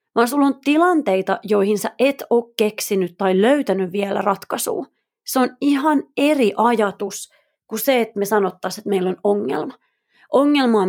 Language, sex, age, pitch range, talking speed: Finnish, female, 30-49, 195-260 Hz, 155 wpm